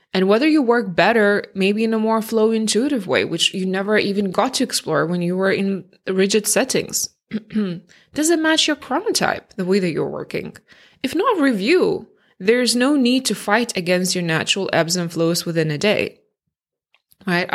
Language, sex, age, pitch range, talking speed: English, female, 20-39, 165-215 Hz, 180 wpm